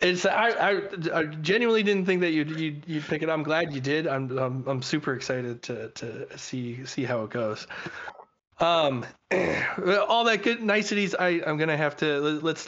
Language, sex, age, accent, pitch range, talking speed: English, male, 20-39, American, 130-160 Hz, 190 wpm